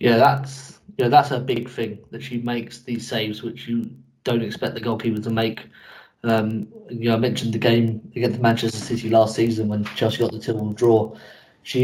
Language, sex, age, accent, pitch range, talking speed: English, male, 20-39, British, 105-115 Hz, 200 wpm